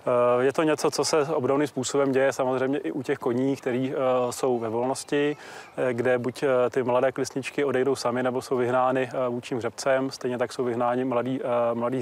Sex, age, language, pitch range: male, 30-49, Czech, 125-140 Hz